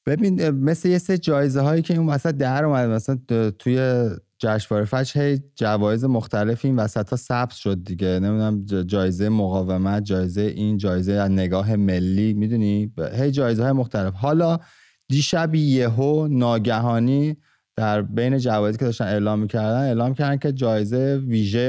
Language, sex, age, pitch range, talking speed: English, male, 30-49, 100-130 Hz, 140 wpm